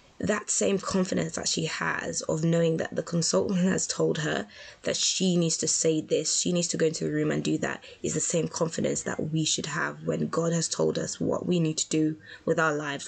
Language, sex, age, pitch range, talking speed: English, female, 20-39, 160-215 Hz, 235 wpm